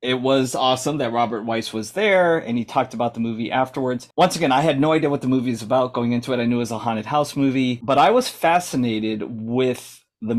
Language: English